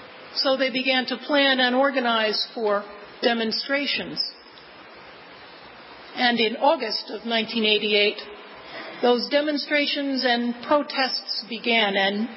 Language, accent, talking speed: English, American, 95 wpm